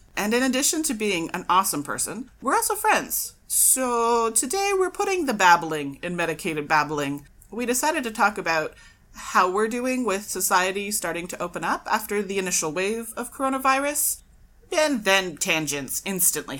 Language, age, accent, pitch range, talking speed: English, 30-49, American, 170-250 Hz, 160 wpm